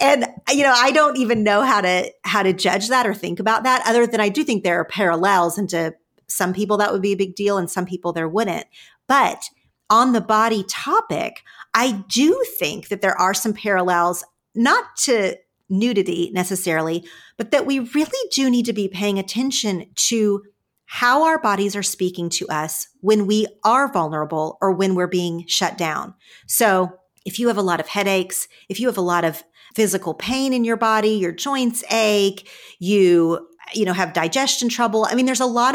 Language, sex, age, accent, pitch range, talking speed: English, female, 40-59, American, 180-230 Hz, 200 wpm